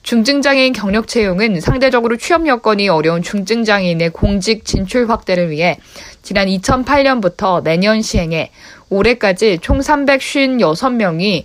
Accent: native